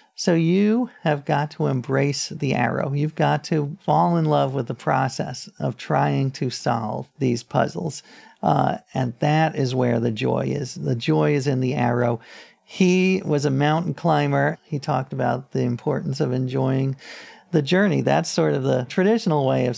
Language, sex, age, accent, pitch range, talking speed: English, male, 50-69, American, 130-165 Hz, 175 wpm